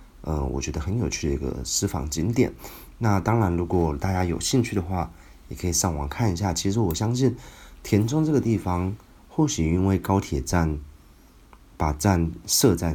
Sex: male